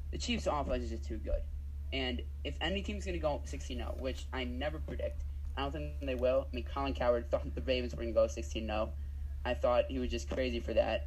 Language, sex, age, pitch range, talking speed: English, male, 20-39, 70-75 Hz, 240 wpm